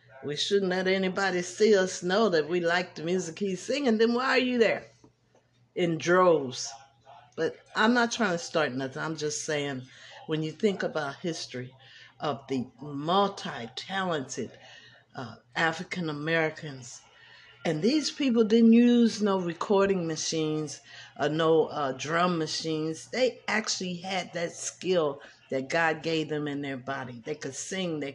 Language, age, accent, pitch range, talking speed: English, 50-69, American, 135-180 Hz, 150 wpm